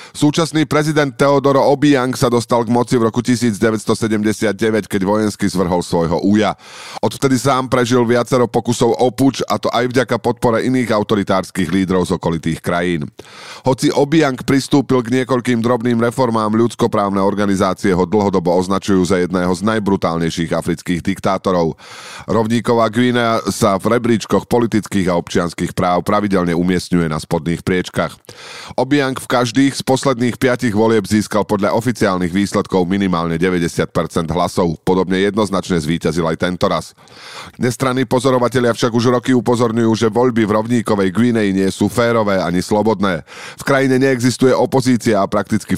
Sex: male